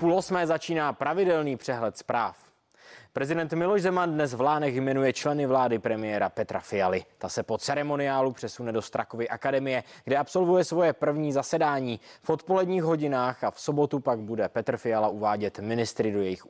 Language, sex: Czech, male